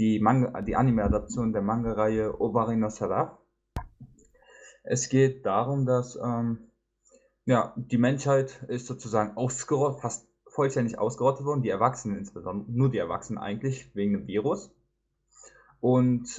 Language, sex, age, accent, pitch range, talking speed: German, male, 10-29, German, 110-130 Hz, 110 wpm